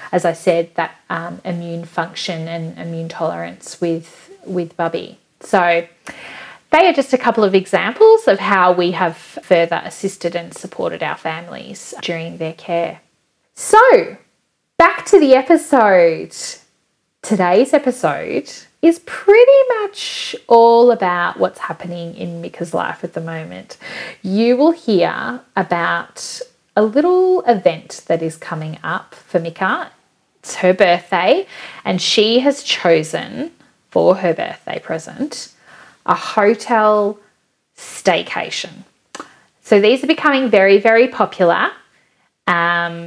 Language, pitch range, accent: English, 175-255 Hz, Australian